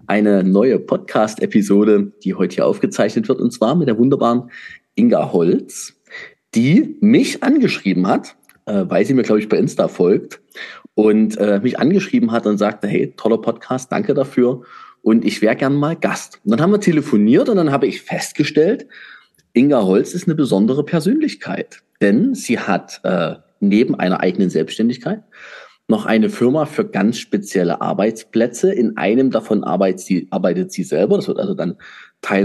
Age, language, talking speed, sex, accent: 30-49, German, 165 wpm, male, German